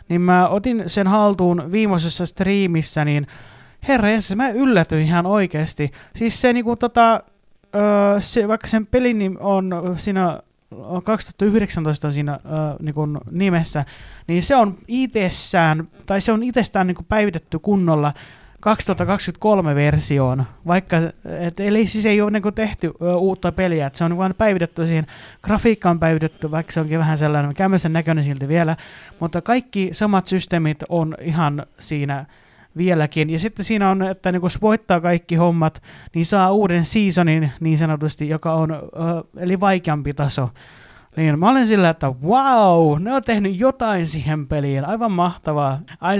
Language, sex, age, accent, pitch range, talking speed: Finnish, male, 30-49, native, 150-195 Hz, 150 wpm